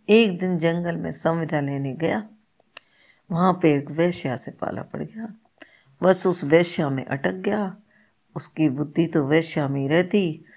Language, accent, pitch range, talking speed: Hindi, native, 150-185 Hz, 155 wpm